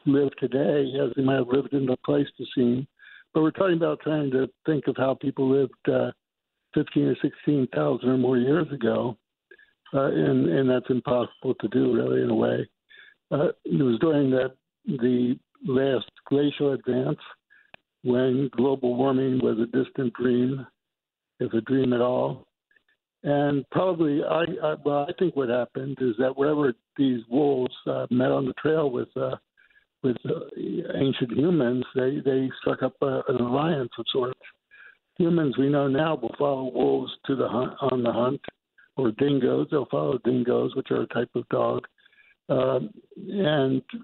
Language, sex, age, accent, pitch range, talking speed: English, male, 60-79, American, 125-145 Hz, 165 wpm